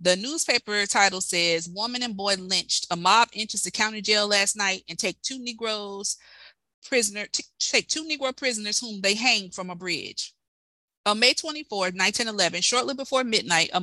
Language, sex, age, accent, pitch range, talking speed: English, female, 30-49, American, 185-240 Hz, 175 wpm